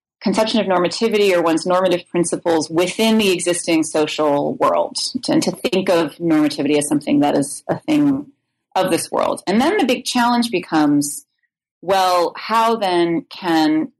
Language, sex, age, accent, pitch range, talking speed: English, female, 30-49, American, 160-225 Hz, 155 wpm